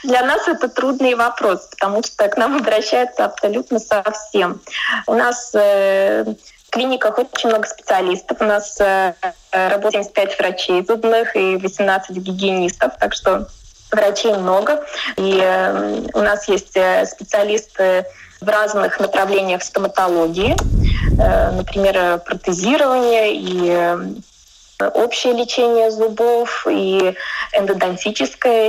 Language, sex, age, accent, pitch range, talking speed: Russian, female, 20-39, native, 195-245 Hz, 100 wpm